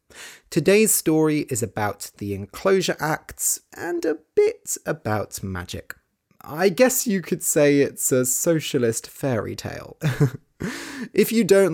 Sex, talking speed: male, 130 wpm